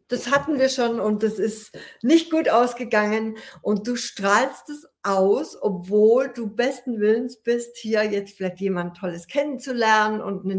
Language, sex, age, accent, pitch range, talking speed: German, female, 60-79, German, 180-215 Hz, 160 wpm